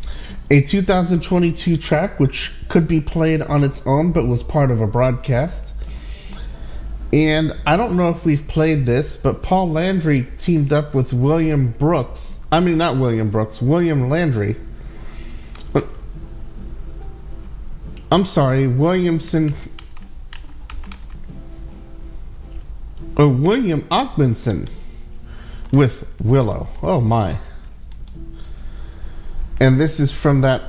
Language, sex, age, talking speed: English, male, 40-59, 105 wpm